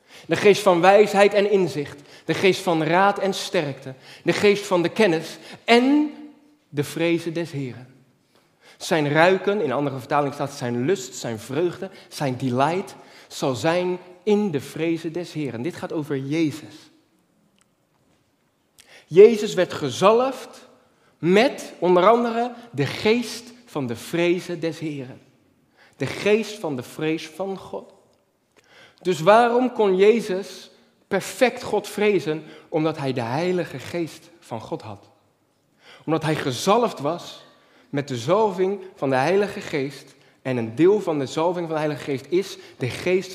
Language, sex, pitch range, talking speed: Dutch, male, 145-200 Hz, 145 wpm